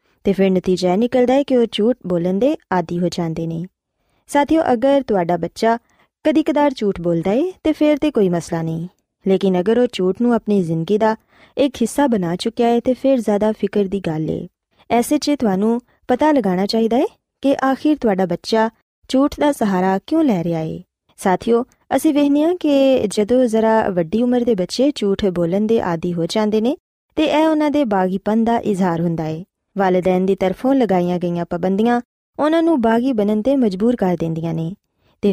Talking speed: 175 wpm